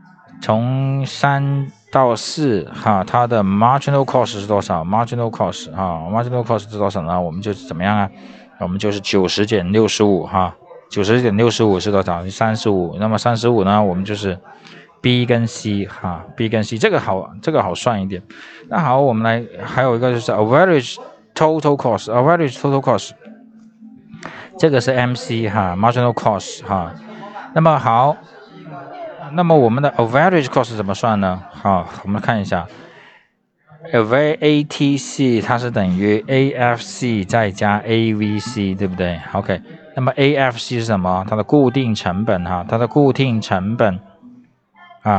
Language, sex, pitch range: Chinese, male, 100-135 Hz